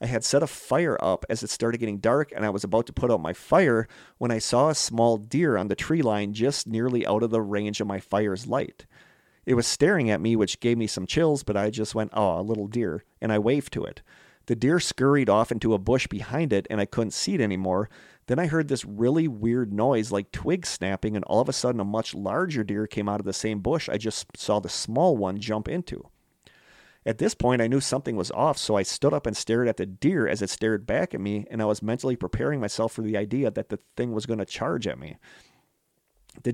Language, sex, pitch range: English, male, 105-125 Hz